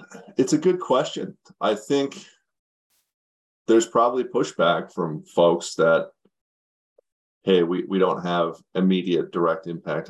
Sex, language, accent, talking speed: male, English, American, 120 wpm